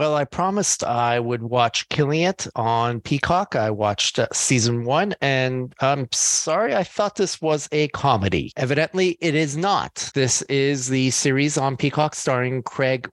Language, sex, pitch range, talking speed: English, male, 125-165 Hz, 160 wpm